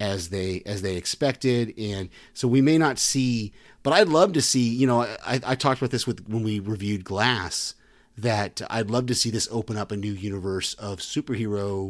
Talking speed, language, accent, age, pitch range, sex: 205 wpm, English, American, 30-49, 100-130 Hz, male